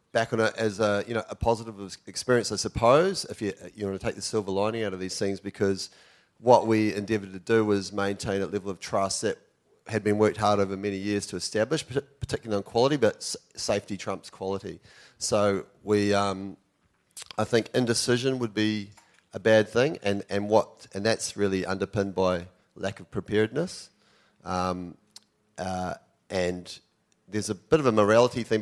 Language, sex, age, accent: English, male, 30-49, Australian